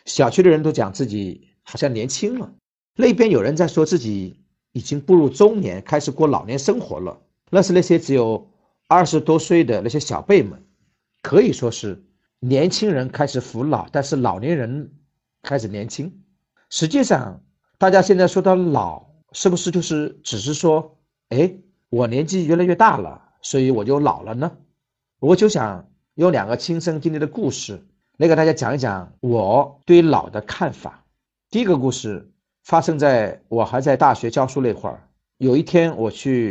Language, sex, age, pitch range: Chinese, male, 50-69, 125-180 Hz